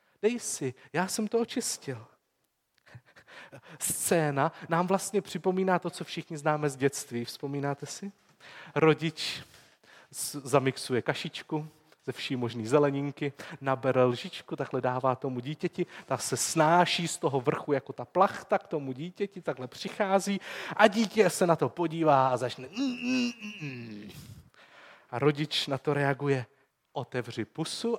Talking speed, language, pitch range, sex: 130 wpm, Czech, 135-190 Hz, male